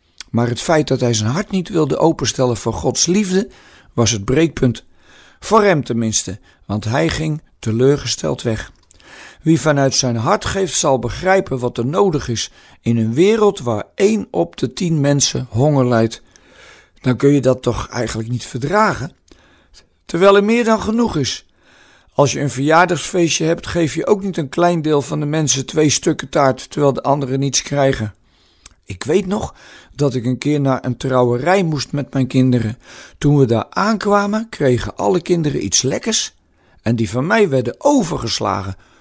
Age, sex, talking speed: 50-69, male, 170 wpm